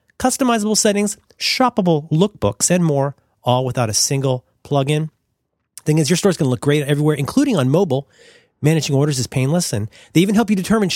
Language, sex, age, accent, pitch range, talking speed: English, male, 30-49, American, 135-200 Hz, 185 wpm